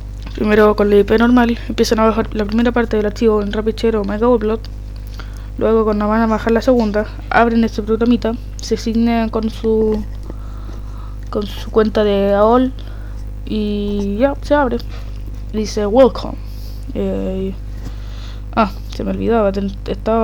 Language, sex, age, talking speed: Spanish, female, 20-39, 150 wpm